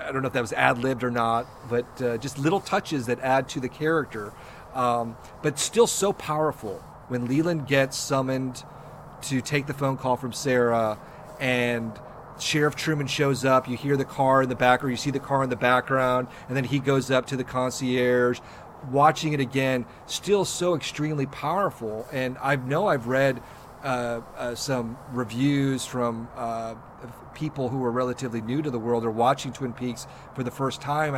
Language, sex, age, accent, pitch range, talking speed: English, male, 40-59, American, 120-140 Hz, 185 wpm